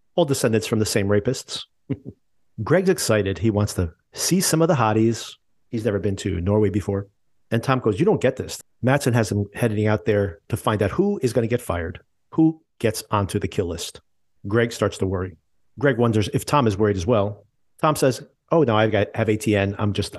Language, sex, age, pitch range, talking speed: English, male, 40-59, 100-120 Hz, 210 wpm